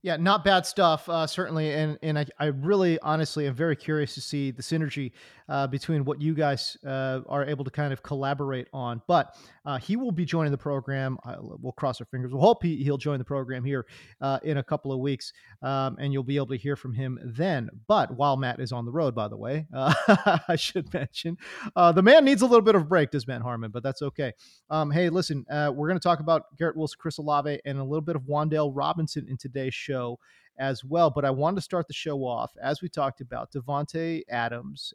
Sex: male